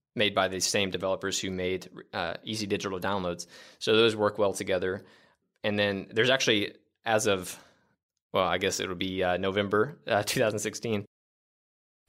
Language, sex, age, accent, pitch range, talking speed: English, male, 20-39, American, 90-105 Hz, 160 wpm